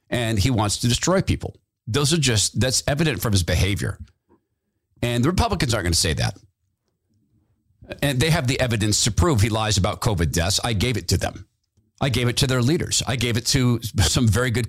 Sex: male